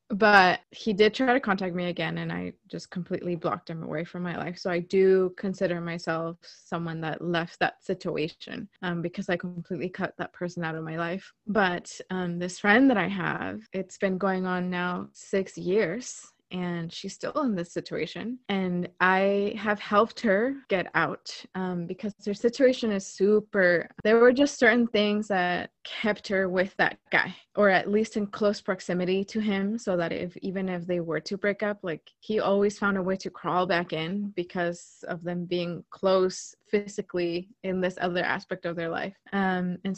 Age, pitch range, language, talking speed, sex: 20-39, 175-205 Hz, English, 190 wpm, female